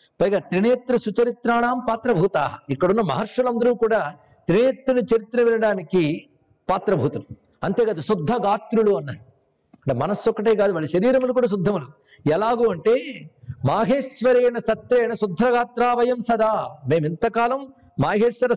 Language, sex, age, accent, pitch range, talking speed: Telugu, male, 50-69, native, 165-240 Hz, 100 wpm